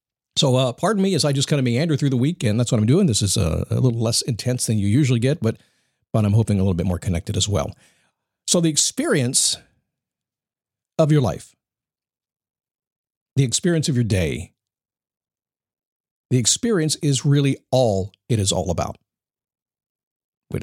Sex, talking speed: male, 175 wpm